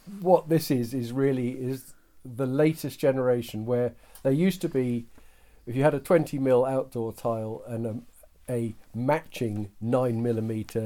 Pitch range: 110-130 Hz